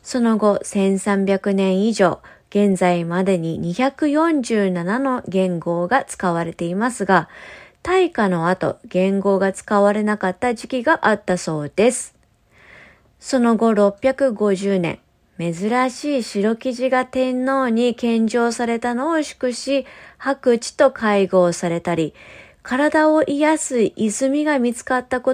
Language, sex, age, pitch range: English, female, 20-39, 195-260 Hz